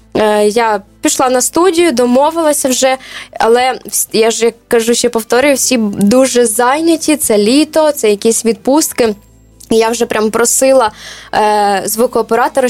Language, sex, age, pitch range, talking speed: Ukrainian, female, 20-39, 230-275 Hz, 125 wpm